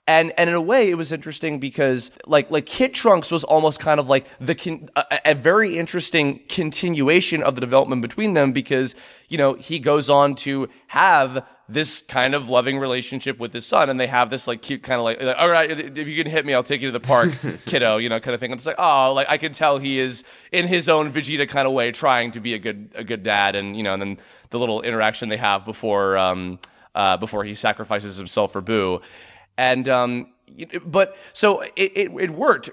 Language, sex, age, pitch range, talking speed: English, male, 20-39, 125-160 Hz, 230 wpm